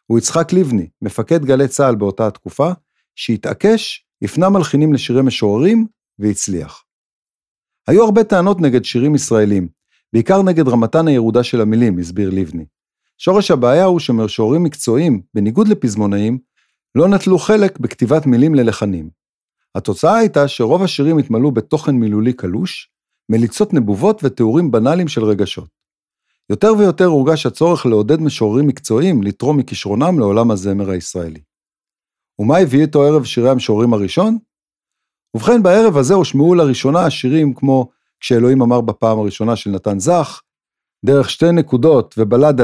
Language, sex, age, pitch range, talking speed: Hebrew, male, 50-69, 105-155 Hz, 130 wpm